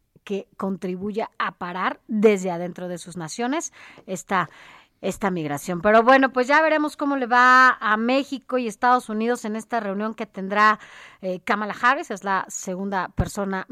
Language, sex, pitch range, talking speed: Spanish, female, 185-235 Hz, 160 wpm